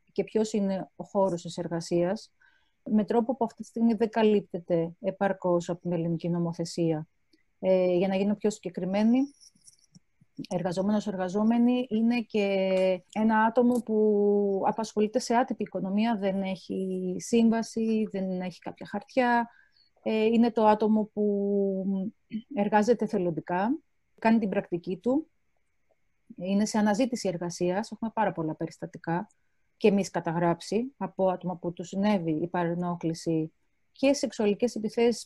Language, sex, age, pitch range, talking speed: Greek, female, 30-49, 180-225 Hz, 130 wpm